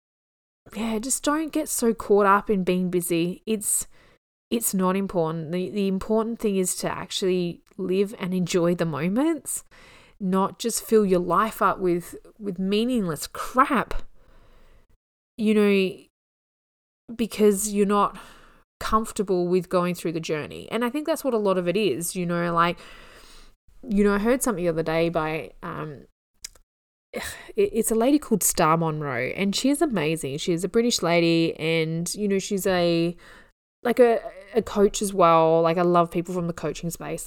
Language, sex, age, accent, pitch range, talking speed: English, female, 20-39, Australian, 170-220 Hz, 165 wpm